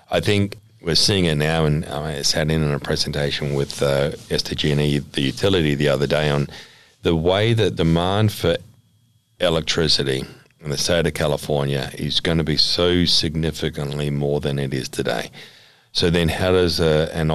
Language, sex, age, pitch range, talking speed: English, male, 40-59, 75-85 Hz, 175 wpm